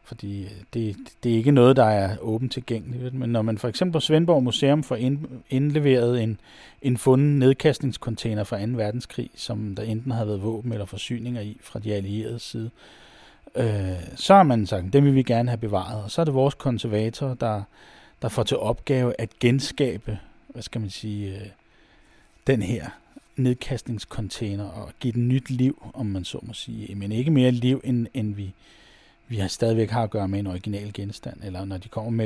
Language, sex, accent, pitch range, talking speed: Danish, male, native, 105-130 Hz, 190 wpm